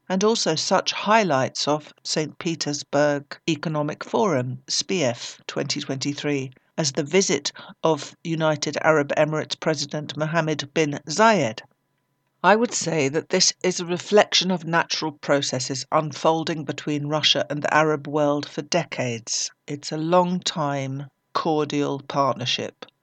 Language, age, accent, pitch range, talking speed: English, 60-79, British, 145-170 Hz, 120 wpm